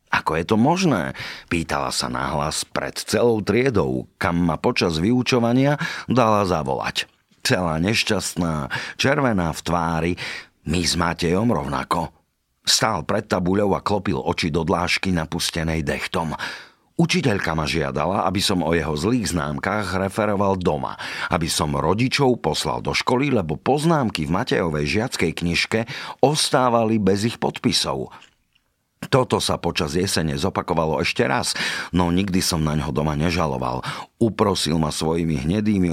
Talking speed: 135 wpm